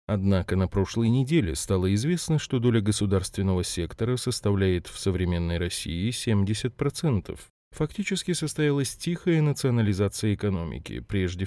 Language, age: Russian, 20-39